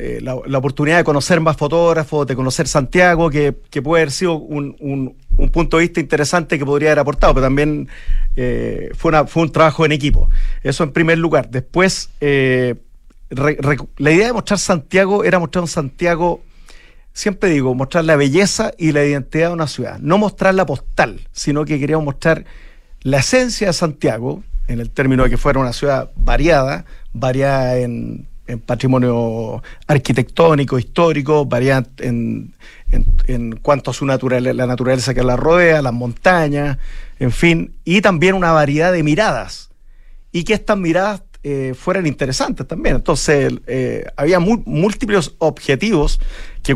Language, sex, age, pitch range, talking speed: Spanish, male, 40-59, 130-170 Hz, 160 wpm